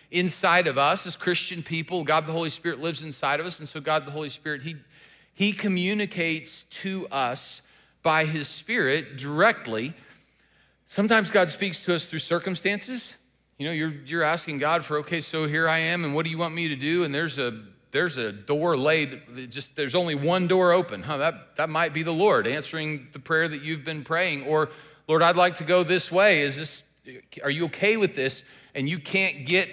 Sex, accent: male, American